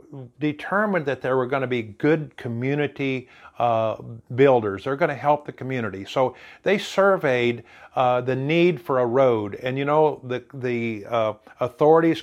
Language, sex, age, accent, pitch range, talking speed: English, male, 50-69, American, 125-160 Hz, 160 wpm